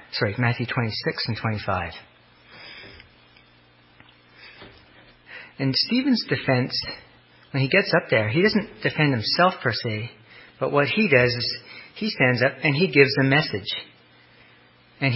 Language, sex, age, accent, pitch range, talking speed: English, male, 40-59, American, 115-155 Hz, 130 wpm